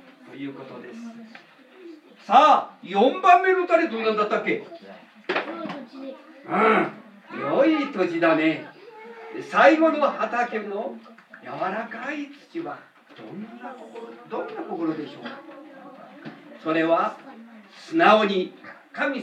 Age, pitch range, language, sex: 40-59, 200-315 Hz, Japanese, male